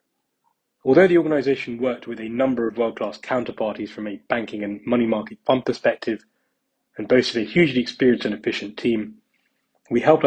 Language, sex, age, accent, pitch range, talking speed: English, male, 20-39, British, 110-130 Hz, 165 wpm